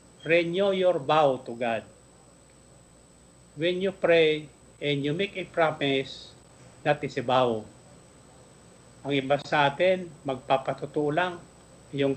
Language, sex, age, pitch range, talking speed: Filipino, male, 50-69, 135-160 Hz, 115 wpm